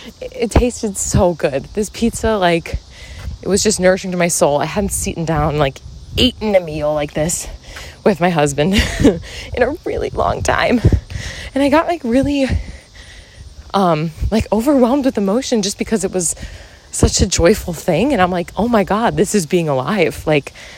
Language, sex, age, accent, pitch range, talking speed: English, female, 20-39, American, 150-225 Hz, 175 wpm